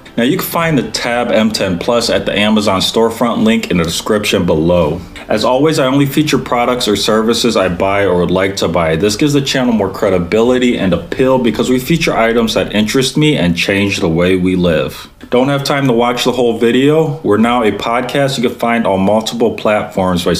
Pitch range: 95-125 Hz